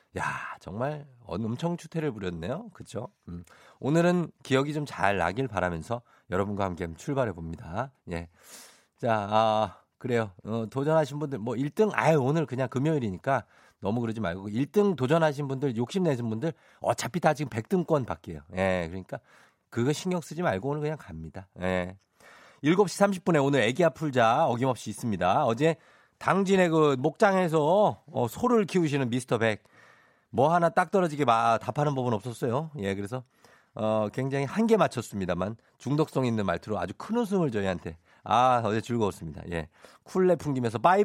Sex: male